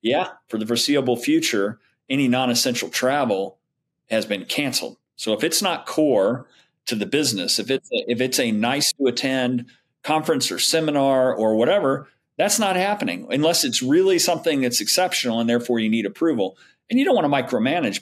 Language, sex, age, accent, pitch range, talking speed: English, male, 40-59, American, 120-190 Hz, 175 wpm